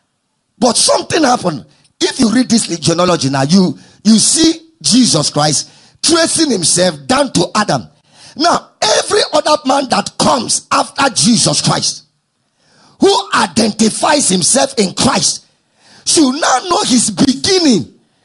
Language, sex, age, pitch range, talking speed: English, male, 50-69, 210-305 Hz, 125 wpm